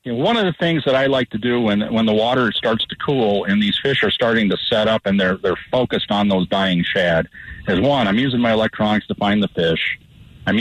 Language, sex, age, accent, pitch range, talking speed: English, male, 50-69, American, 95-120 Hz, 255 wpm